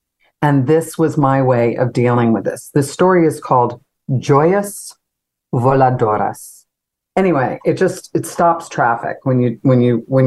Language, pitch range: English, 120-155 Hz